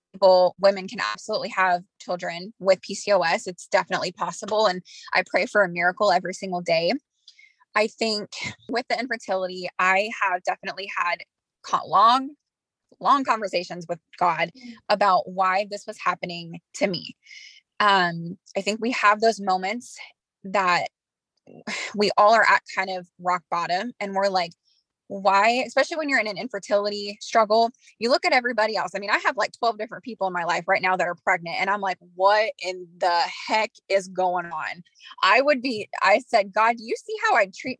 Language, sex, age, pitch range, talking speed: English, female, 20-39, 185-230 Hz, 175 wpm